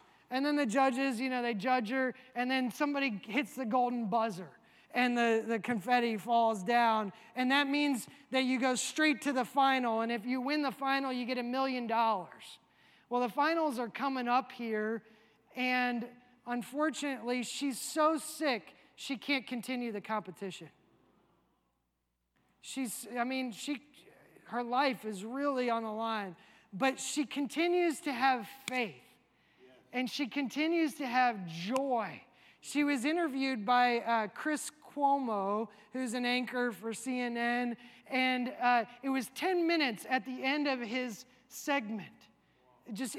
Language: English